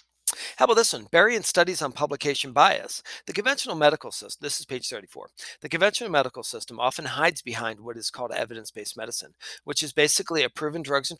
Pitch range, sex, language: 125-165 Hz, male, English